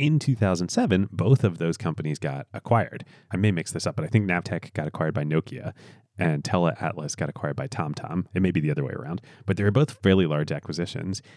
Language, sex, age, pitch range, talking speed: English, male, 30-49, 80-125 Hz, 220 wpm